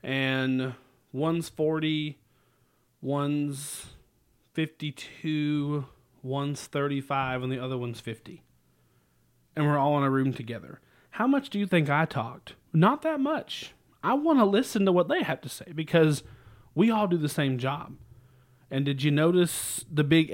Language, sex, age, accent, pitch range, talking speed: English, male, 30-49, American, 130-160 Hz, 155 wpm